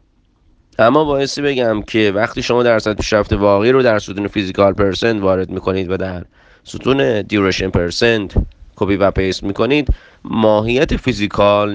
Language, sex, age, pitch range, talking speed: Persian, male, 30-49, 95-115 Hz, 145 wpm